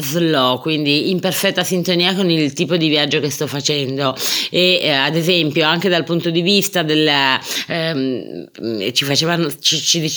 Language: Italian